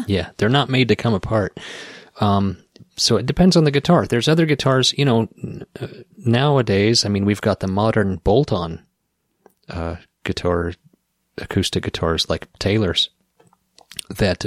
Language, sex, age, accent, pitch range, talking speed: English, male, 30-49, American, 95-120 Hz, 145 wpm